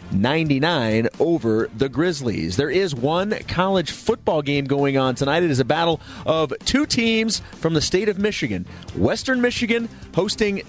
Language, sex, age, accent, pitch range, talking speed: English, male, 30-49, American, 130-190 Hz, 155 wpm